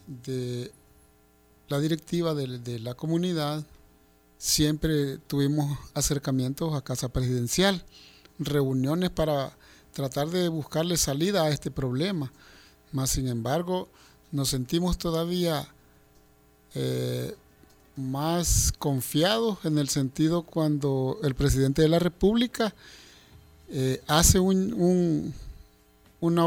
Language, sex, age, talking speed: Spanish, male, 50-69, 95 wpm